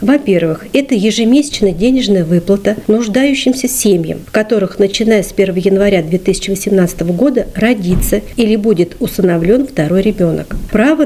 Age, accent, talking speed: 50-69, native, 120 wpm